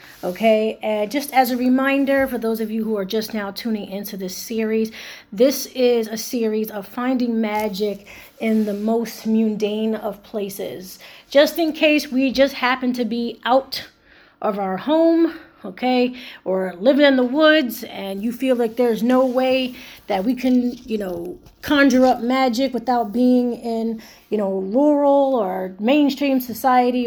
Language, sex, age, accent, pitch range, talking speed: English, female, 30-49, American, 210-260 Hz, 160 wpm